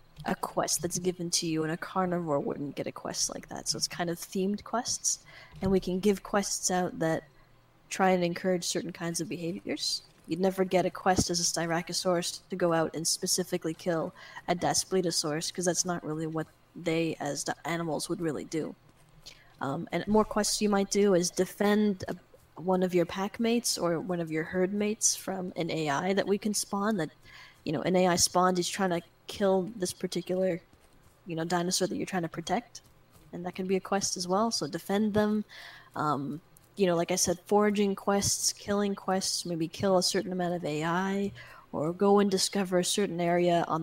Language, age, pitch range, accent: English, 10-29, 170-195 Hz, American